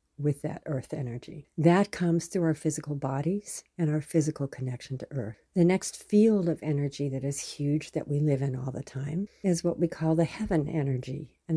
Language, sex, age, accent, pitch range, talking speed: English, female, 60-79, American, 150-185 Hz, 200 wpm